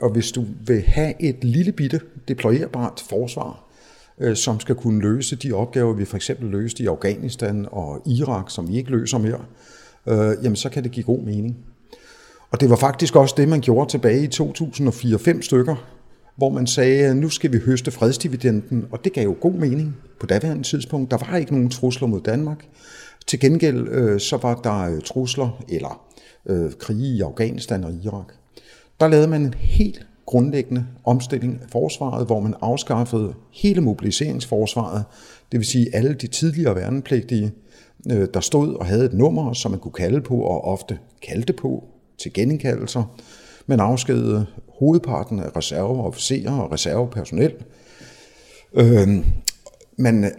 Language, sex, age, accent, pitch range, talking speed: Danish, male, 50-69, native, 110-135 Hz, 160 wpm